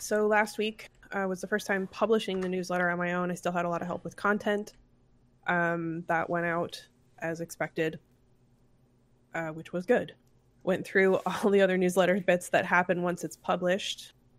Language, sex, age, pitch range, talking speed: English, female, 20-39, 135-180 Hz, 190 wpm